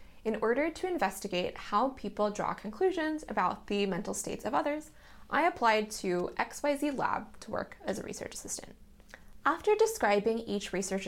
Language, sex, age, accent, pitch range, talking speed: English, female, 10-29, American, 200-285 Hz, 155 wpm